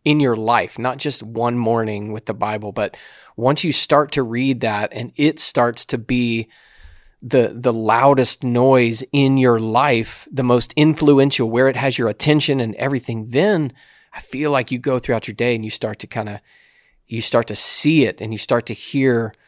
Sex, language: male, English